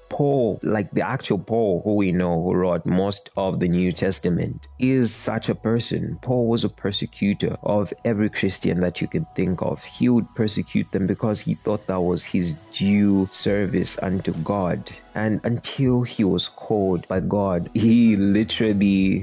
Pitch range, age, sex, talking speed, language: 90-110 Hz, 20-39, male, 170 wpm, English